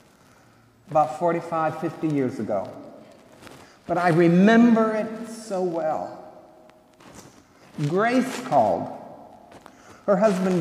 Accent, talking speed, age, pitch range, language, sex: American, 85 wpm, 60-79, 140-195 Hz, English, male